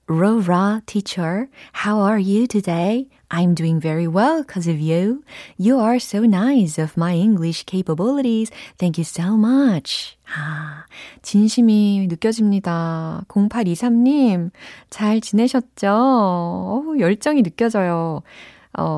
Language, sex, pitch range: Korean, female, 170-230 Hz